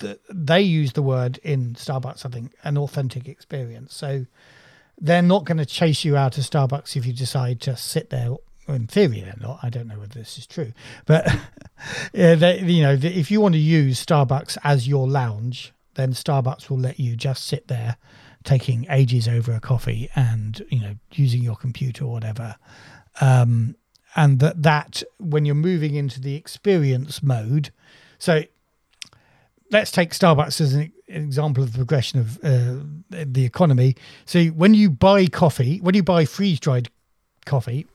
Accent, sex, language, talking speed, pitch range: British, male, English, 170 wpm, 130-165 Hz